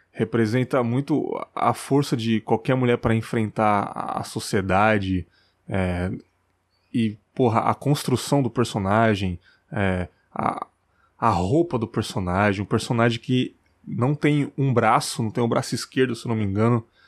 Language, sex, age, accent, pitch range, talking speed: Portuguese, male, 20-39, Brazilian, 105-130 Hz, 135 wpm